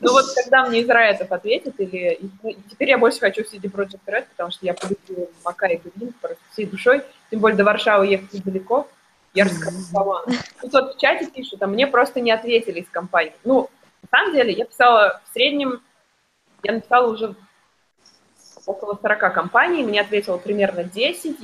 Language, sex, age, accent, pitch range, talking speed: Russian, female, 20-39, native, 190-245 Hz, 180 wpm